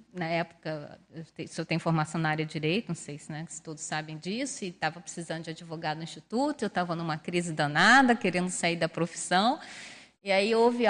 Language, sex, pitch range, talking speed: Portuguese, female, 160-200 Hz, 205 wpm